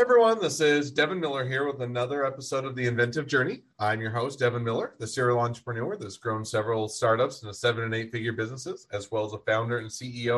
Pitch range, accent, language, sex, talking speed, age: 100-120 Hz, American, English, male, 225 wpm, 30-49